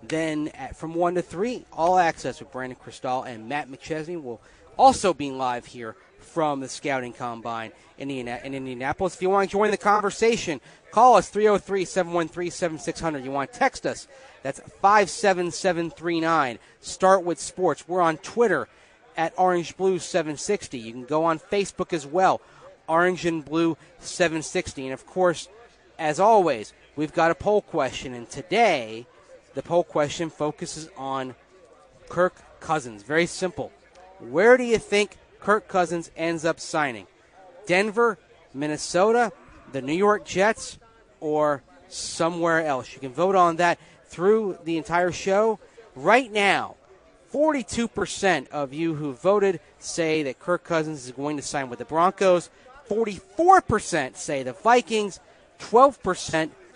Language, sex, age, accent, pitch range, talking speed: English, male, 30-49, American, 150-195 Hz, 140 wpm